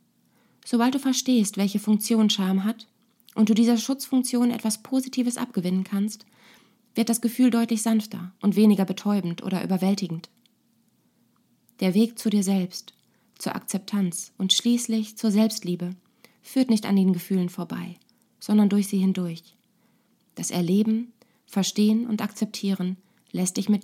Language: German